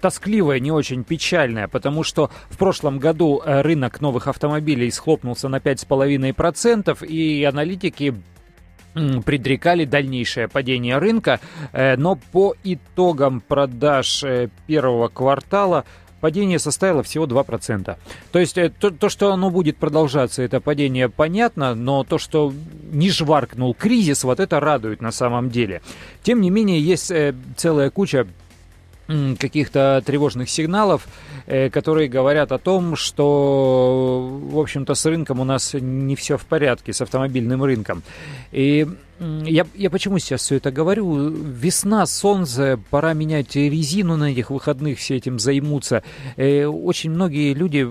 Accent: native